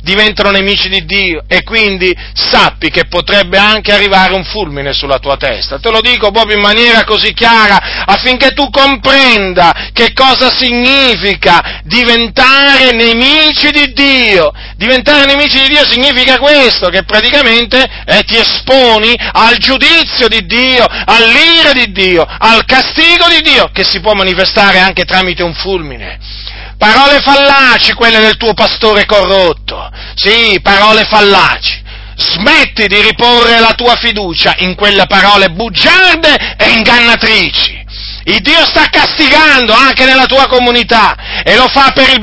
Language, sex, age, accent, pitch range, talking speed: Italian, male, 40-59, native, 200-260 Hz, 140 wpm